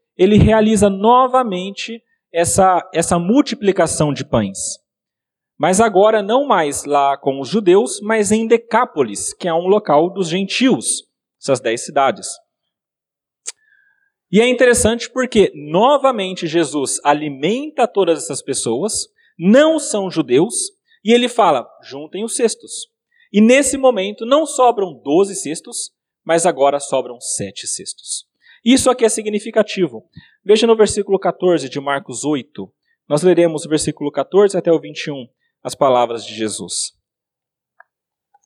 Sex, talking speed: male, 130 wpm